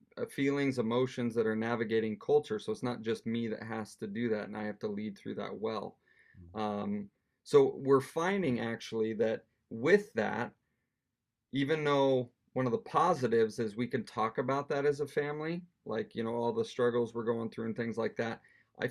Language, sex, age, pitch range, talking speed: English, male, 30-49, 110-135 Hz, 195 wpm